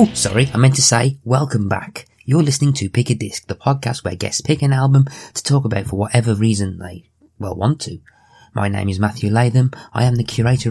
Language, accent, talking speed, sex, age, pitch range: English, British, 220 wpm, male, 20-39, 100-120 Hz